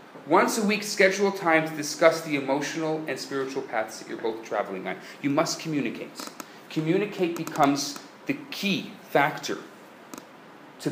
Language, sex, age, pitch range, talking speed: English, male, 30-49, 150-250 Hz, 145 wpm